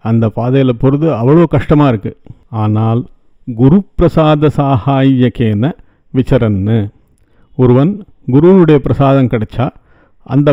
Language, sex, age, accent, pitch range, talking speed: English, male, 50-69, Indian, 125-145 Hz, 85 wpm